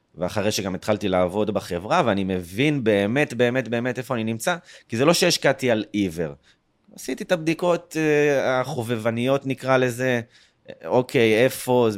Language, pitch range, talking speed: Hebrew, 100-130 Hz, 140 wpm